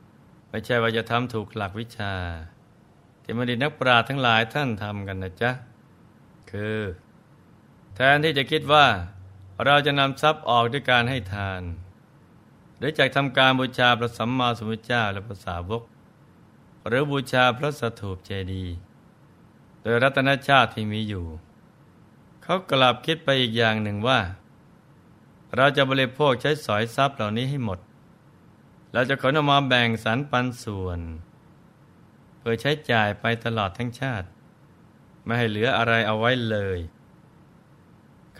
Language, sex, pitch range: Thai, male, 105-135 Hz